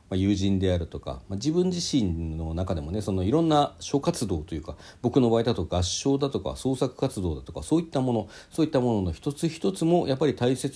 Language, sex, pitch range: Japanese, male, 90-155 Hz